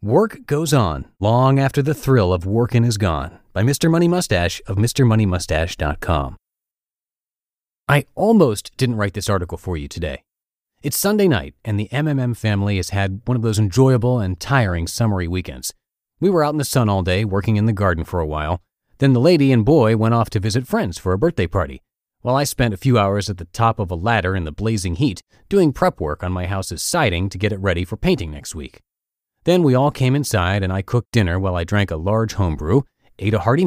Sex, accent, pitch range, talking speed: male, American, 95-140 Hz, 215 wpm